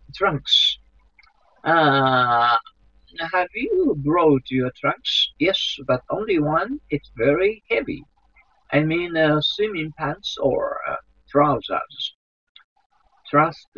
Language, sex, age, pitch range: Japanese, male, 50-69, 125-170 Hz